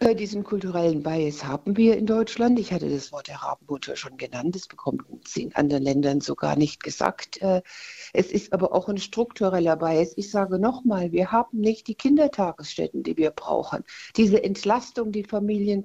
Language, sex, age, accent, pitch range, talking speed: German, female, 60-79, German, 160-210 Hz, 175 wpm